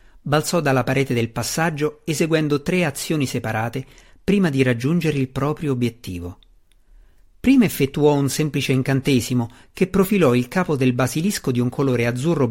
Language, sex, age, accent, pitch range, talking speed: Italian, male, 50-69, native, 120-165 Hz, 145 wpm